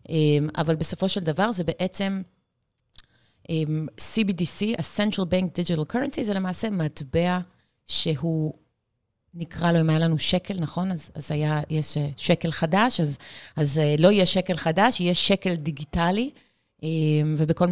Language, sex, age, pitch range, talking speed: Hebrew, female, 30-49, 150-185 Hz, 130 wpm